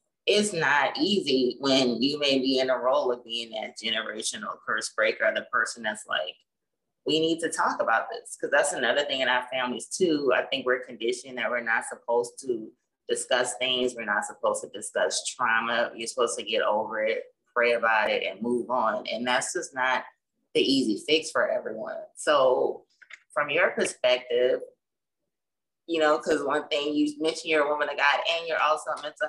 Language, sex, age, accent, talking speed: English, female, 20-39, American, 190 wpm